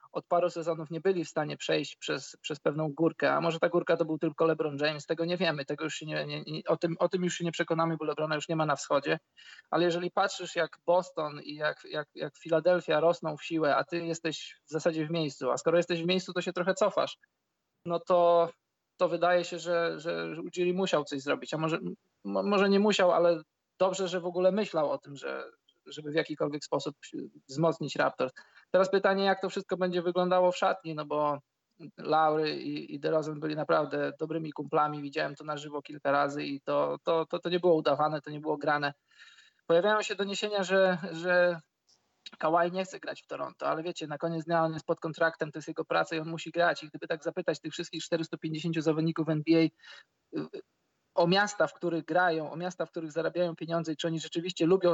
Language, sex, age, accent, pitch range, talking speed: Polish, male, 20-39, native, 155-180 Hz, 210 wpm